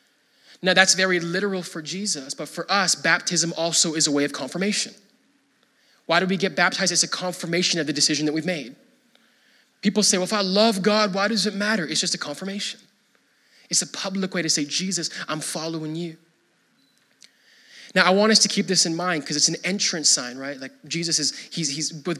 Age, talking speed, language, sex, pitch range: 20-39, 205 wpm, English, male, 155-210 Hz